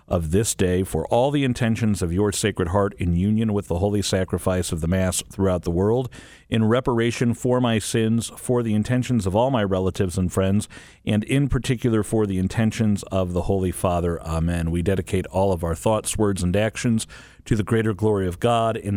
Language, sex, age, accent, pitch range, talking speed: English, male, 50-69, American, 85-110 Hz, 200 wpm